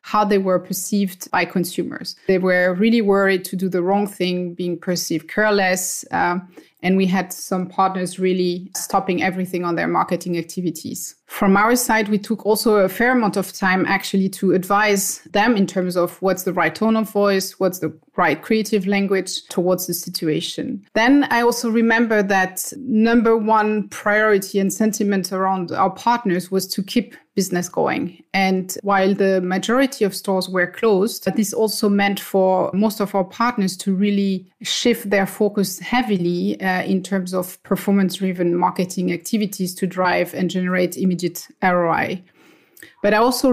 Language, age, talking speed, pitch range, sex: English, 30-49, 165 wpm, 185-210 Hz, female